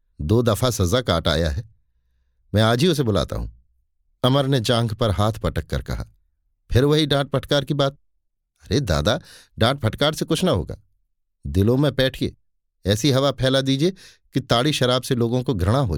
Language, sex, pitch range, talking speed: Hindi, male, 85-135 Hz, 185 wpm